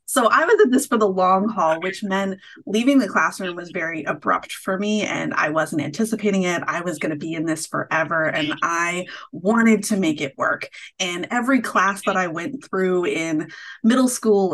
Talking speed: 200 wpm